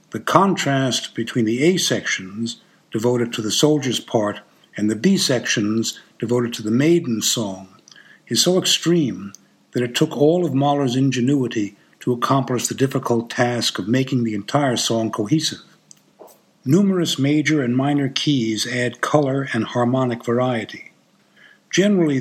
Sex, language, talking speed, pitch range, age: male, English, 140 wpm, 115-145 Hz, 60-79